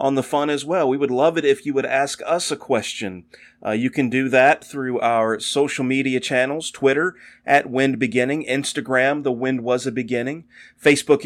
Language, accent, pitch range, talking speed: English, American, 125-145 Hz, 195 wpm